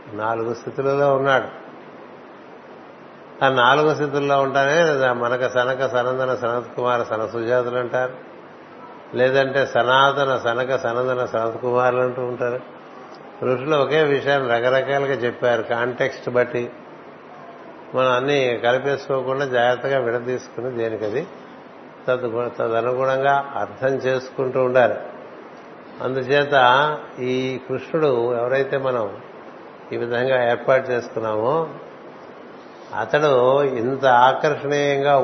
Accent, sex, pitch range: native, male, 125-140 Hz